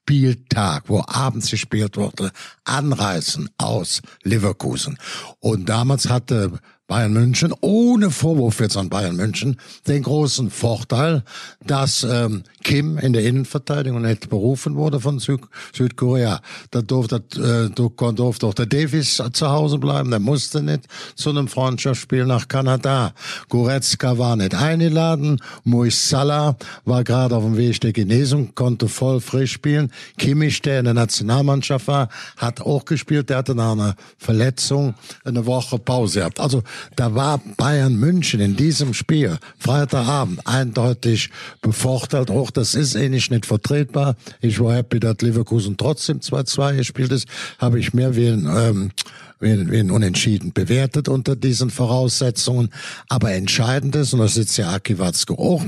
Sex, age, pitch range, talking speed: male, 60-79, 115-140 Hz, 145 wpm